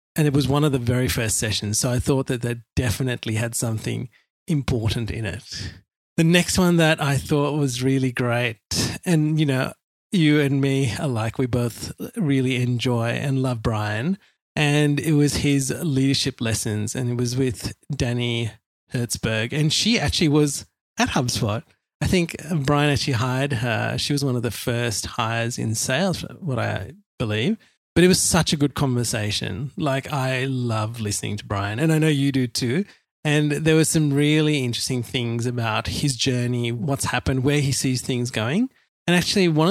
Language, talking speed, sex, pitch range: English, 180 wpm, male, 120-150 Hz